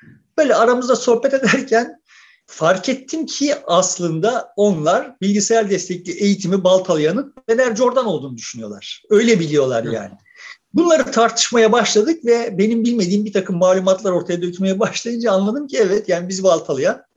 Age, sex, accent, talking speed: 50-69, male, native, 135 wpm